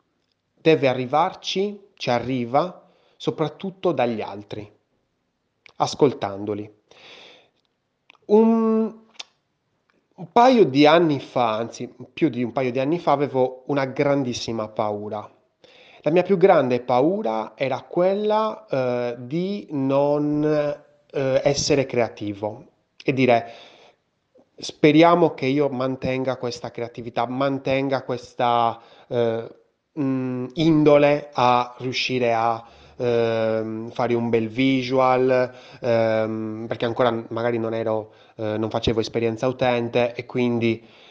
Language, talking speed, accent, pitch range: Italian, 105 wpm, native, 115-140 Hz